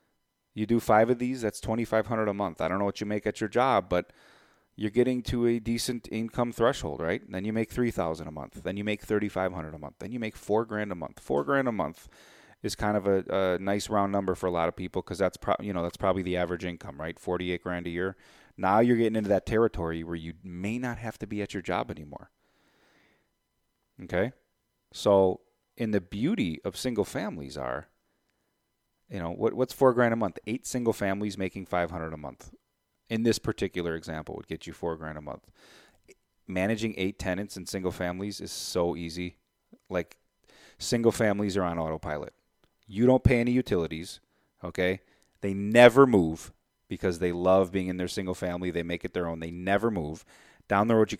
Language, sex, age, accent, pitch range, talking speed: English, male, 30-49, American, 90-115 Hz, 205 wpm